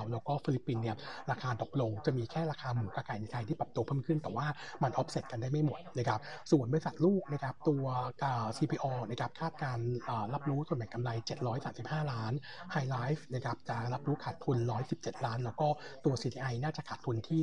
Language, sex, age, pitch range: Thai, male, 60-79, 120-155 Hz